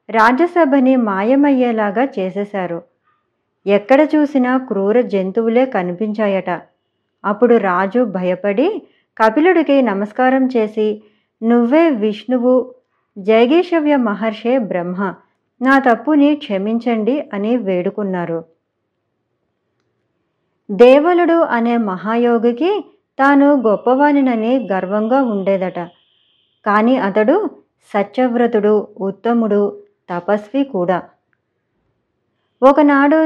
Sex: male